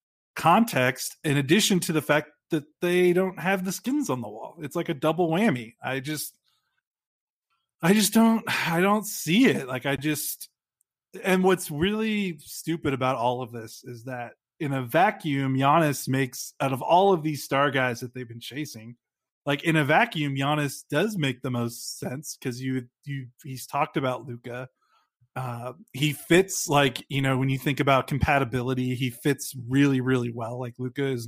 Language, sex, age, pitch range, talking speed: English, male, 30-49, 130-155 Hz, 180 wpm